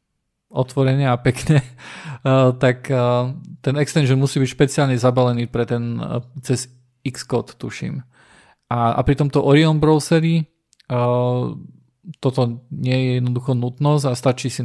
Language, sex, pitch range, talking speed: Slovak, male, 125-145 Hz, 120 wpm